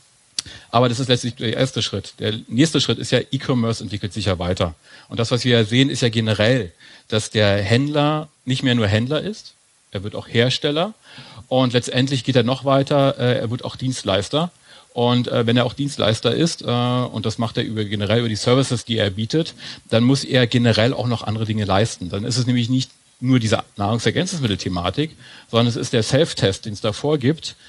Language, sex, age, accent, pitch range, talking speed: German, male, 40-59, German, 110-135 Hz, 195 wpm